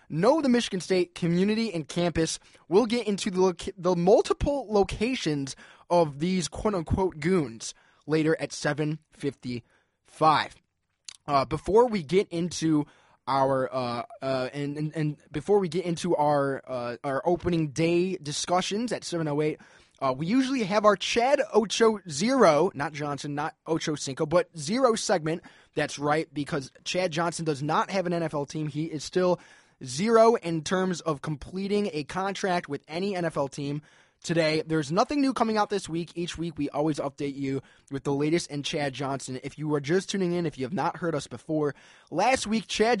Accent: American